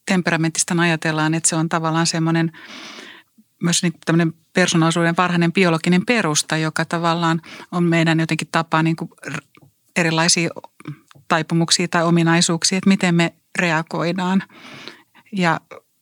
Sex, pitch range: female, 165-190 Hz